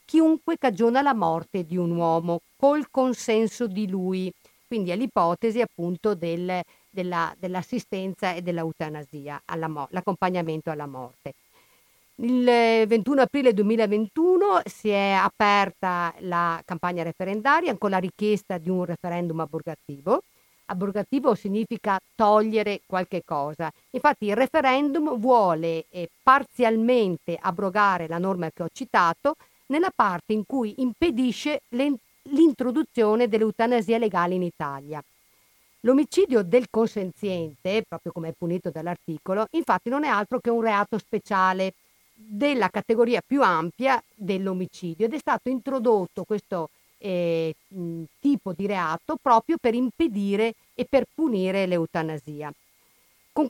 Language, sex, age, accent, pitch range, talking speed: Italian, female, 50-69, native, 175-245 Hz, 120 wpm